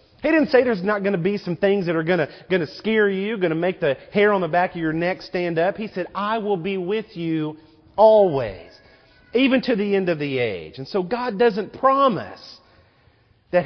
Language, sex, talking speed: English, male, 225 wpm